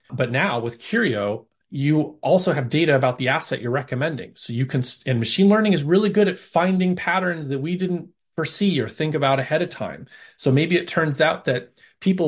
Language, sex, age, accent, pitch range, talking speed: English, male, 30-49, American, 130-165 Hz, 205 wpm